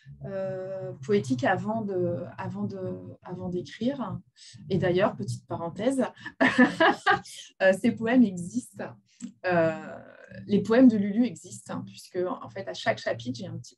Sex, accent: female, French